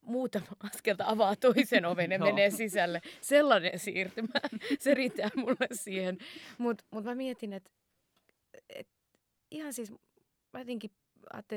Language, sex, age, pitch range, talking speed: Finnish, female, 20-39, 160-210 Hz, 130 wpm